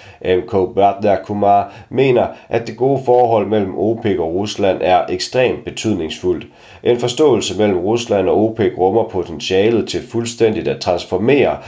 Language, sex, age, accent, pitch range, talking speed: Danish, male, 30-49, native, 90-115 Hz, 135 wpm